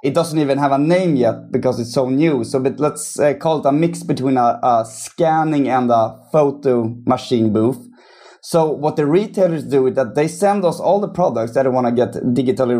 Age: 20-39